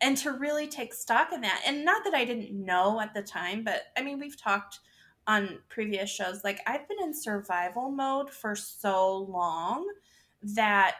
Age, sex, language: 20-39, female, English